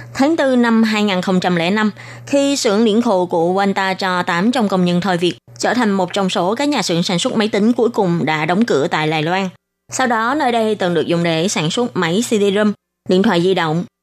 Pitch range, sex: 175-225 Hz, female